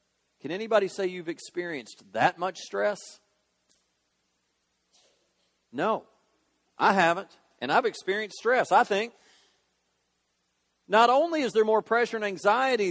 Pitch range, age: 145-205 Hz, 40-59